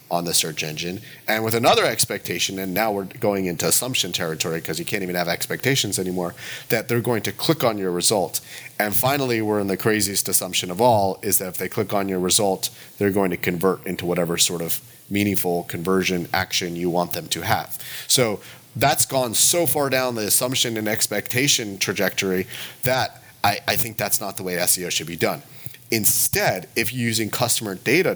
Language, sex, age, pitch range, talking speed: English, male, 30-49, 95-125 Hz, 195 wpm